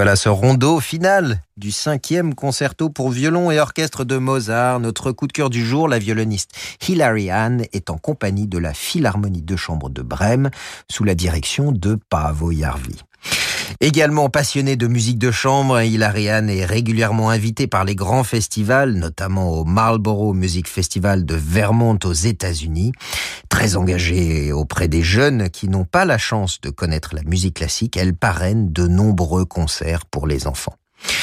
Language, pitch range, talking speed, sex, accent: French, 90-130 Hz, 165 wpm, male, French